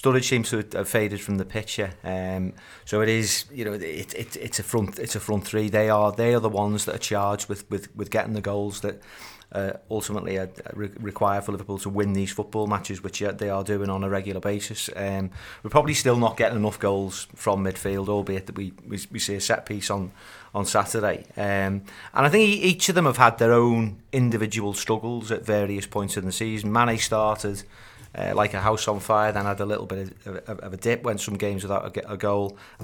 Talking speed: 225 wpm